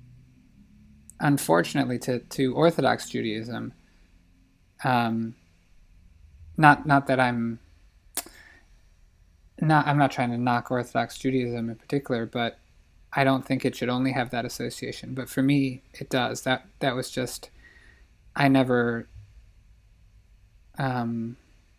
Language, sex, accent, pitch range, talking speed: English, male, American, 100-130 Hz, 115 wpm